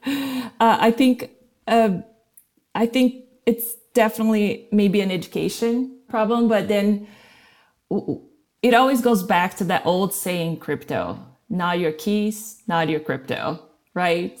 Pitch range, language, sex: 175-225 Hz, English, female